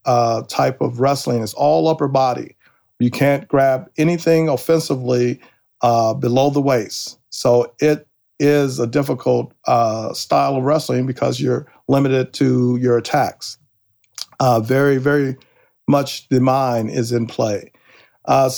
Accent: American